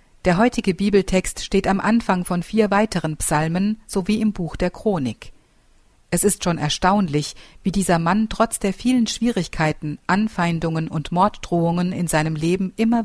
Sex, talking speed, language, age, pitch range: female, 150 wpm, German, 50-69, 160-195 Hz